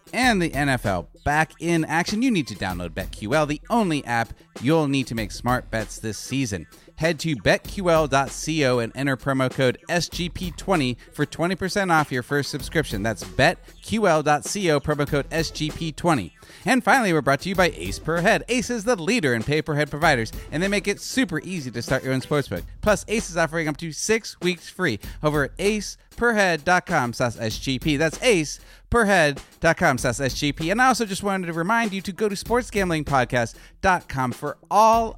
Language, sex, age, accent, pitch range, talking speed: English, male, 30-49, American, 130-175 Hz, 170 wpm